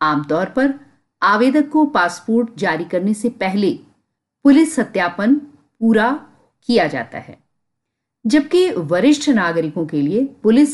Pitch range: 190-255 Hz